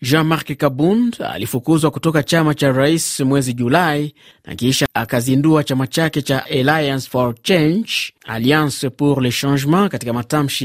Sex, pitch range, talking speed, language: male, 130-160 Hz, 135 wpm, Swahili